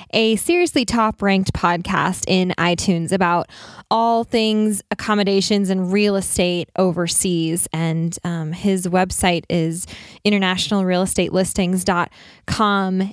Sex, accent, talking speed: female, American, 90 wpm